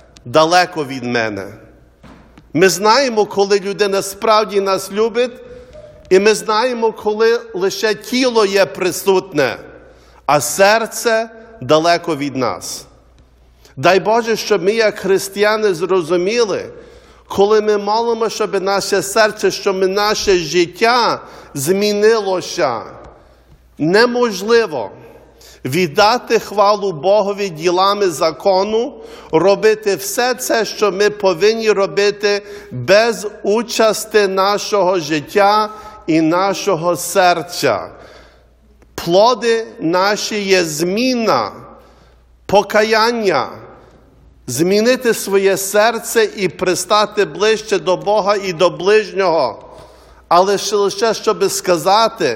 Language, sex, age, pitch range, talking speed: English, male, 50-69, 185-220 Hz, 95 wpm